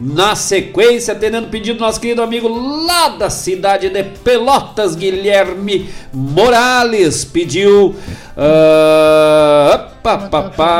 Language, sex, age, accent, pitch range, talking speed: Portuguese, male, 50-69, Brazilian, 150-235 Hz, 110 wpm